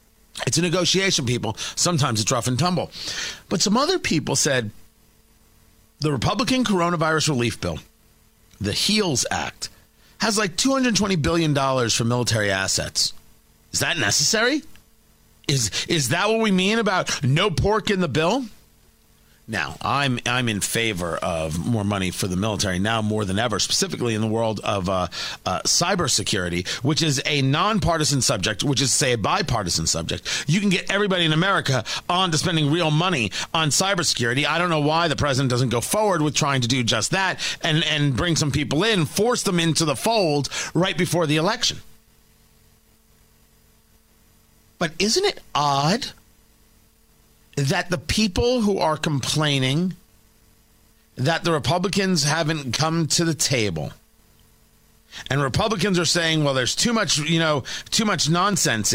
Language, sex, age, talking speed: English, male, 40-59, 155 wpm